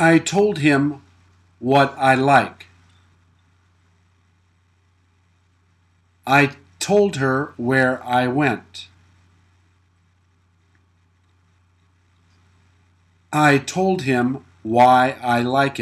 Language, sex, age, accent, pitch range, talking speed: English, male, 50-69, American, 90-120 Hz, 70 wpm